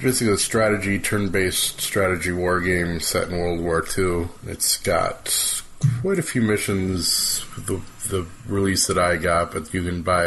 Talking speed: 165 wpm